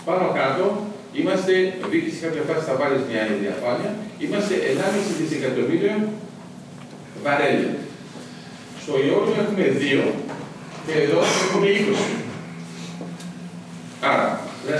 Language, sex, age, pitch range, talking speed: Greek, male, 50-69, 130-195 Hz, 100 wpm